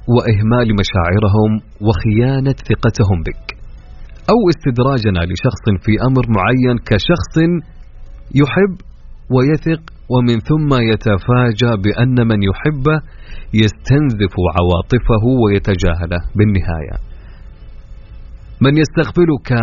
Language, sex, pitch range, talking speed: Arabic, male, 95-125 Hz, 80 wpm